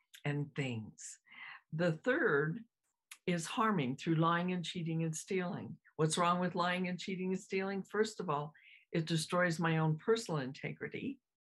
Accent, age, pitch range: American, 60-79, 150-190 Hz